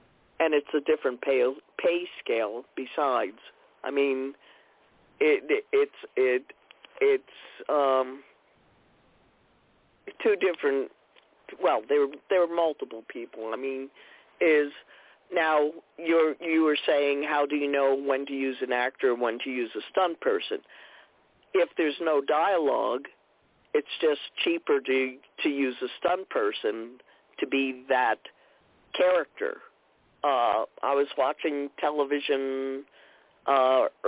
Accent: American